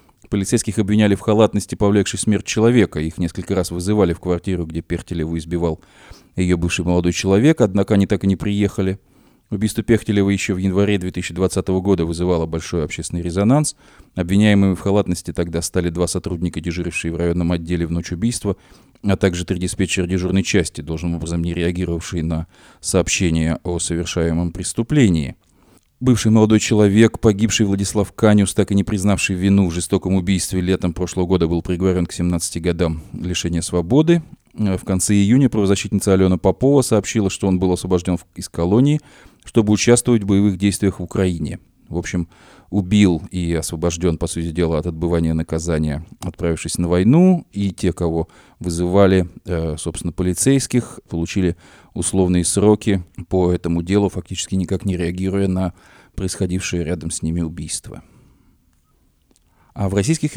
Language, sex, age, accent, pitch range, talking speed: Russian, male, 30-49, native, 85-105 Hz, 150 wpm